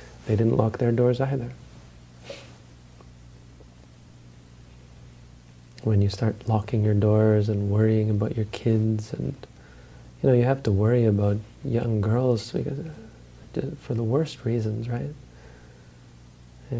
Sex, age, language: male, 40-59, English